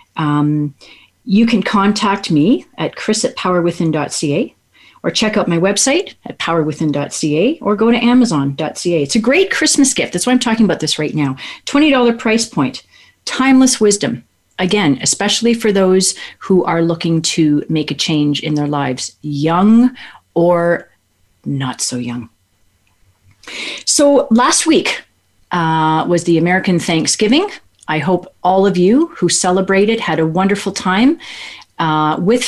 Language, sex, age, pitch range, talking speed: English, female, 40-59, 155-235 Hz, 145 wpm